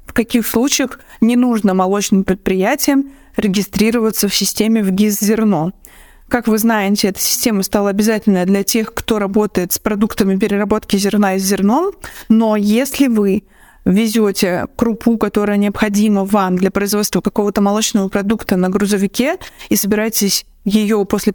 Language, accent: Russian, native